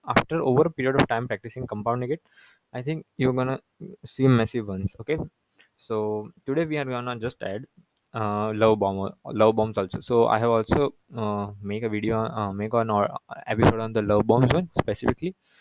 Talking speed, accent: 190 wpm, Indian